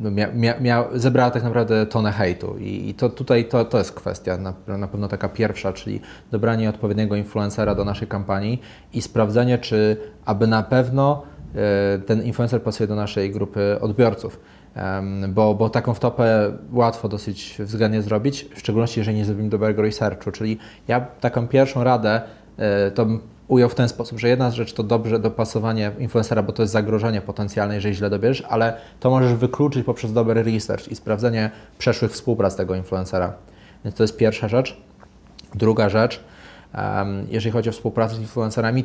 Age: 20-39